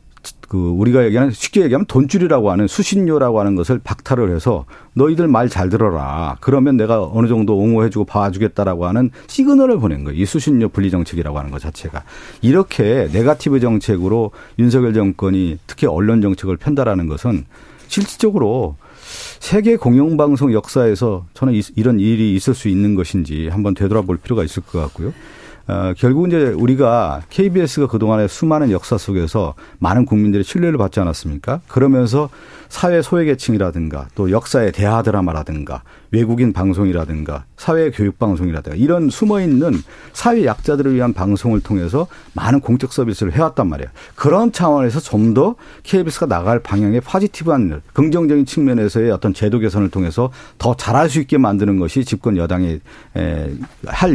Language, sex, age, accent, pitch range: Korean, male, 40-59, native, 95-135 Hz